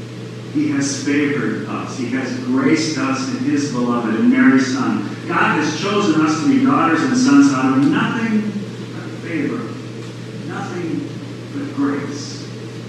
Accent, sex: American, male